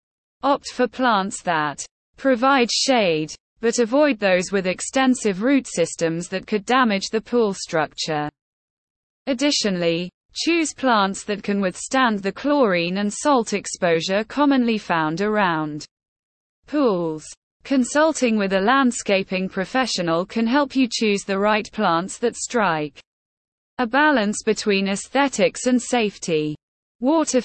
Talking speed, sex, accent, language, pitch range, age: 120 wpm, female, British, English, 185-250 Hz, 20-39